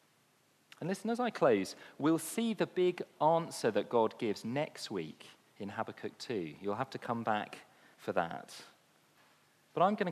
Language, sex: English, male